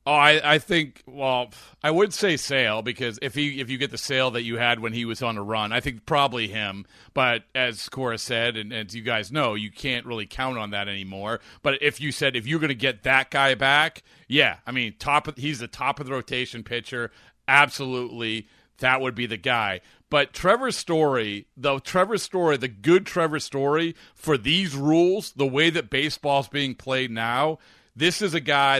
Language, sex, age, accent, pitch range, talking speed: English, male, 40-59, American, 115-150 Hz, 210 wpm